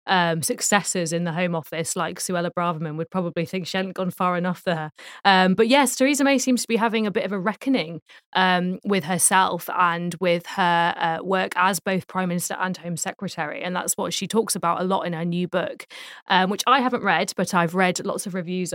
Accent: British